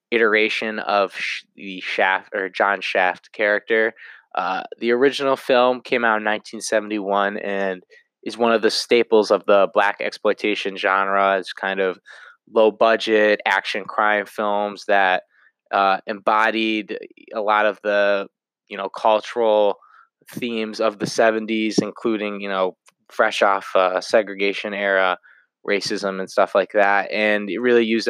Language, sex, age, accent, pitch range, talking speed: English, male, 20-39, American, 100-115 Hz, 140 wpm